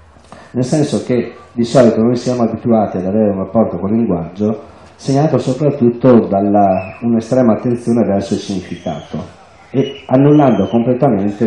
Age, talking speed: 40-59, 135 wpm